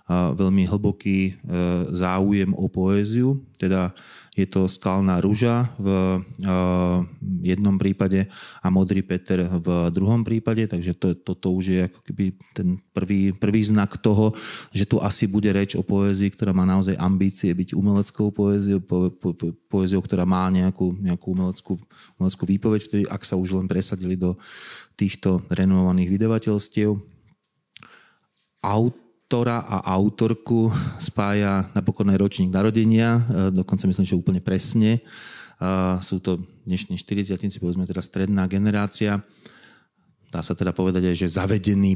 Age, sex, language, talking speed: 30-49, male, Slovak, 135 wpm